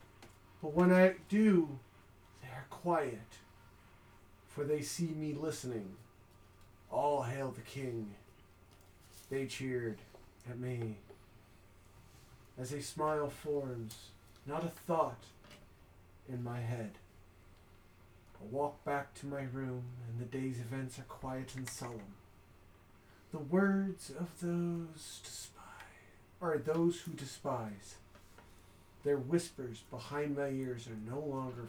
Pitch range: 100-135 Hz